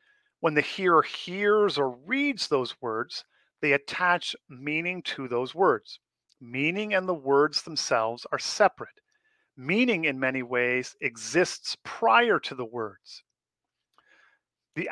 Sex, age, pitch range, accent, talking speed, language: male, 50-69, 130-205 Hz, American, 125 wpm, English